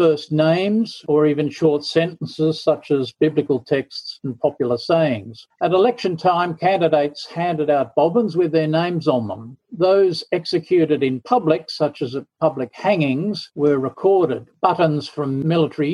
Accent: Australian